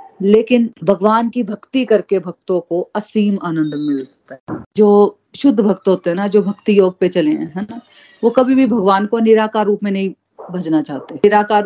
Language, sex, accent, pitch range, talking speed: Hindi, female, native, 180-220 Hz, 190 wpm